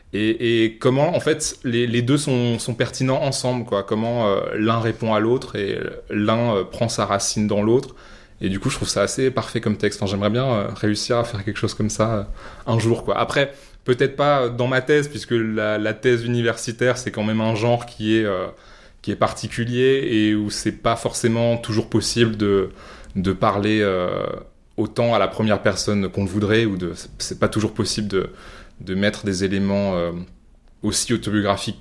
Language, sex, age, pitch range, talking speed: French, male, 20-39, 100-120 Hz, 200 wpm